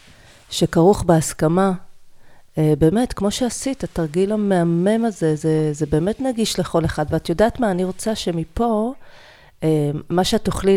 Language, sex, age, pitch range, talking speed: Hebrew, female, 40-59, 155-210 Hz, 130 wpm